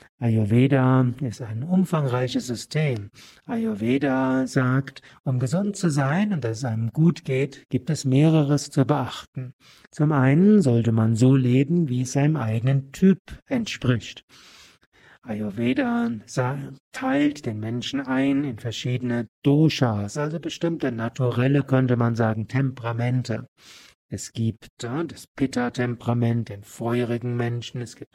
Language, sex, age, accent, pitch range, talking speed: German, male, 60-79, German, 115-145 Hz, 125 wpm